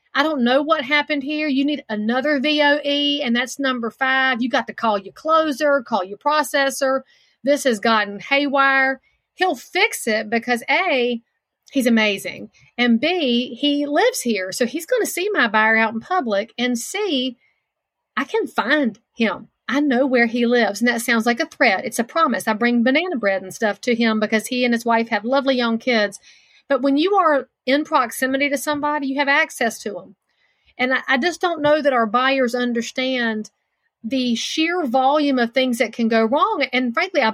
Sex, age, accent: female, 40-59, American